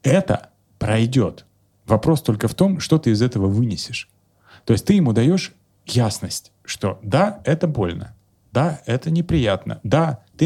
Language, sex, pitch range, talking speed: Russian, male, 105-145 Hz, 150 wpm